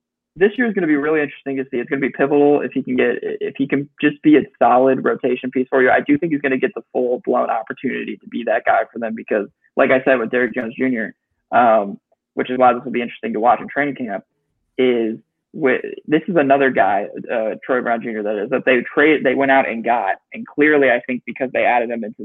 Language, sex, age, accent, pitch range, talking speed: English, male, 20-39, American, 125-185 Hz, 260 wpm